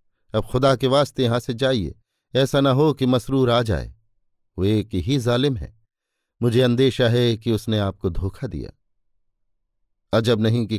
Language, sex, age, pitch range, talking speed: Hindi, male, 50-69, 105-130 Hz, 165 wpm